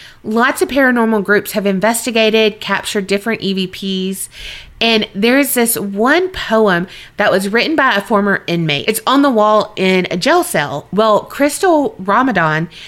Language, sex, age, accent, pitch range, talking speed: English, female, 30-49, American, 185-230 Hz, 155 wpm